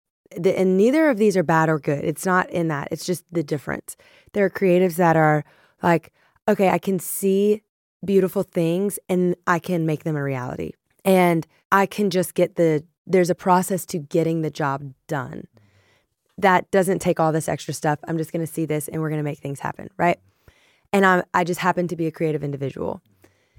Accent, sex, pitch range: American, female, 160-195 Hz